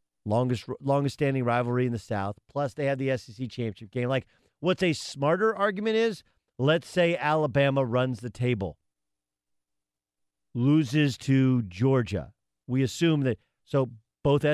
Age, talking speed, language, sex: 50-69, 140 wpm, English, male